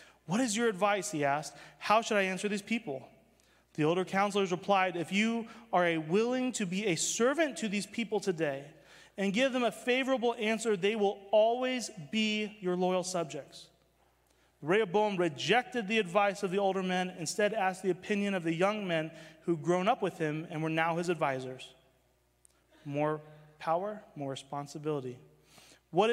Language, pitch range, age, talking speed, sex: English, 160-210 Hz, 30-49, 170 wpm, male